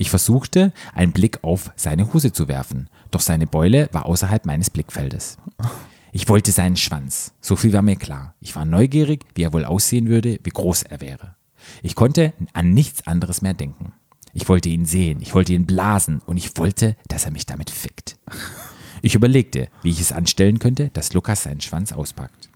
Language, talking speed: German, 190 wpm